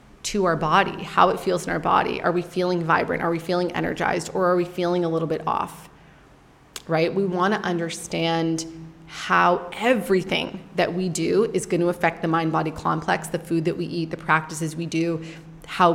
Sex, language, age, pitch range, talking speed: female, English, 30-49, 165-185 Hz, 200 wpm